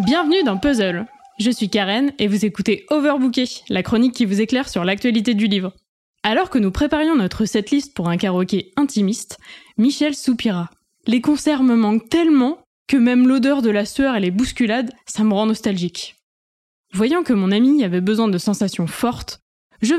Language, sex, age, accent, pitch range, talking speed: French, female, 20-39, French, 215-300 Hz, 175 wpm